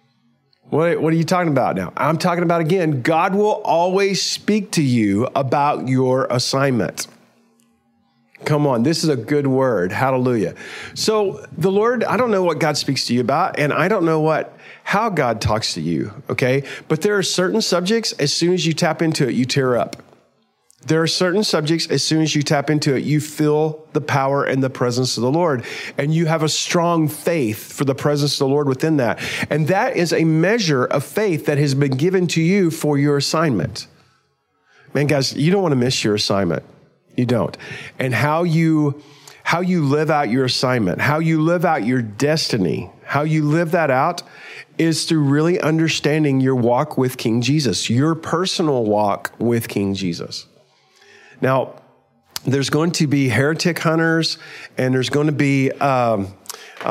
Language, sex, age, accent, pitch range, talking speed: English, male, 40-59, American, 130-165 Hz, 185 wpm